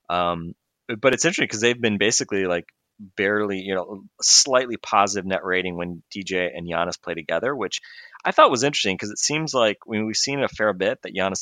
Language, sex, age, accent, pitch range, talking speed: English, male, 20-39, American, 85-100 Hz, 210 wpm